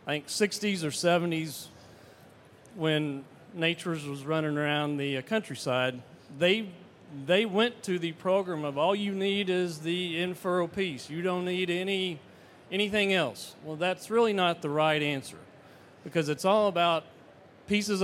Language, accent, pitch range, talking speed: English, American, 155-210 Hz, 145 wpm